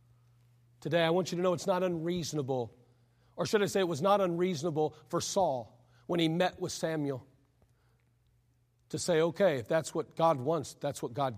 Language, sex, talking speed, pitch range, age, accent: English, male, 185 wpm, 120-195 Hz, 40-59, American